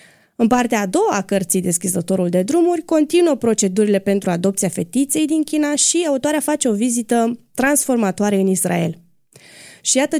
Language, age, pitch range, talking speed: Romanian, 20-39, 190-260 Hz, 155 wpm